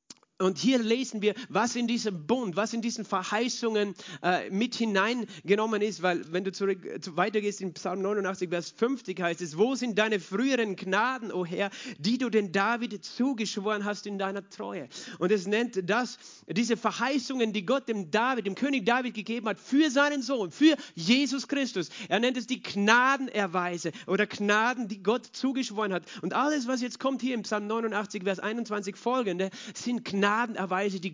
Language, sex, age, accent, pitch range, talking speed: German, male, 40-59, German, 185-230 Hz, 180 wpm